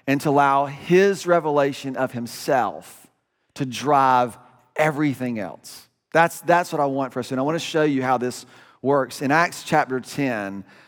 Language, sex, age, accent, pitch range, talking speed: English, male, 40-59, American, 135-165 Hz, 165 wpm